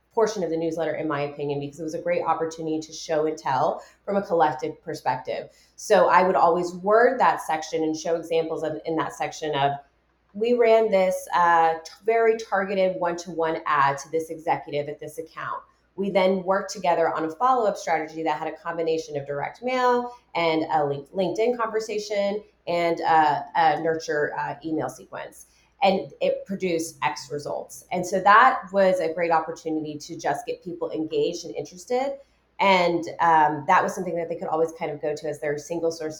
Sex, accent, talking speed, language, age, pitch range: female, American, 190 wpm, English, 30-49, 155-190 Hz